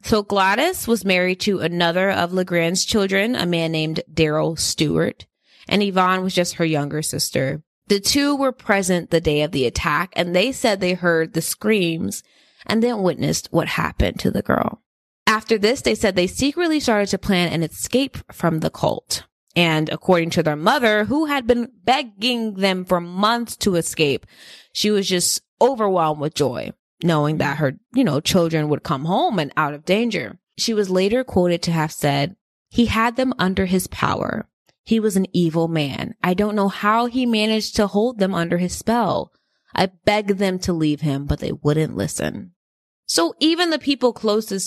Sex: female